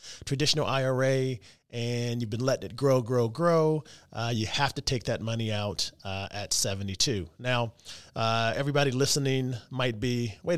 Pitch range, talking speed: 100-125 Hz, 160 wpm